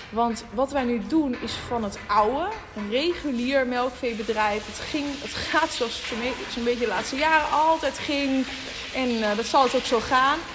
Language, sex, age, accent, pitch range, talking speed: Dutch, female, 20-39, Dutch, 225-280 Hz, 200 wpm